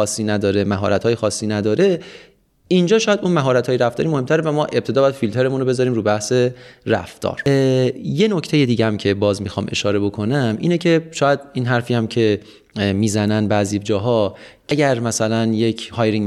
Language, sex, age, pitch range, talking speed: Persian, male, 30-49, 105-130 Hz, 155 wpm